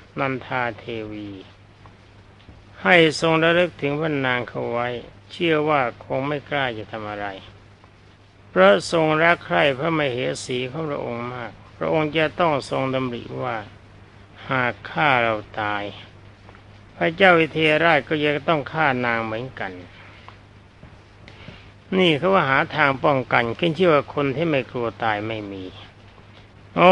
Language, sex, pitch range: Thai, male, 105-145 Hz